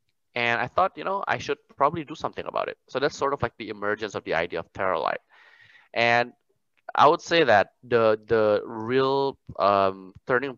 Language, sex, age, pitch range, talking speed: English, male, 20-39, 95-115 Hz, 195 wpm